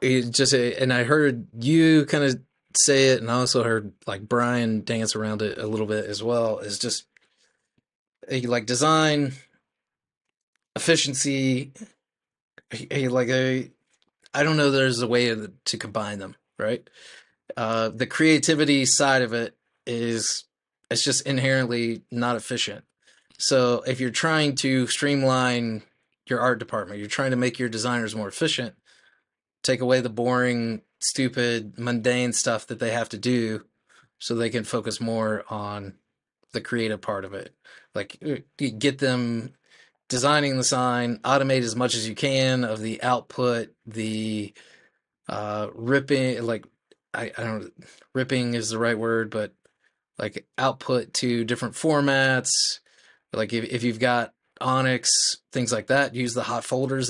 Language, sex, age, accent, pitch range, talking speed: English, male, 30-49, American, 115-130 Hz, 150 wpm